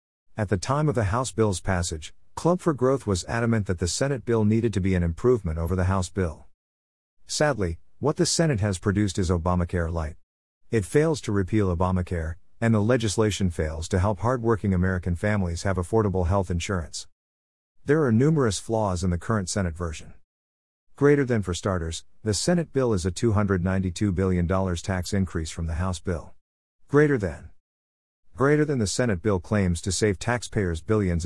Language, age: English, 50-69